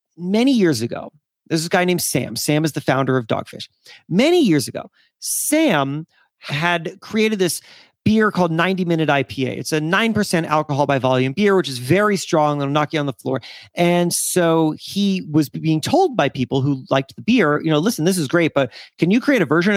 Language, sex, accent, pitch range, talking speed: English, male, American, 145-210 Hz, 200 wpm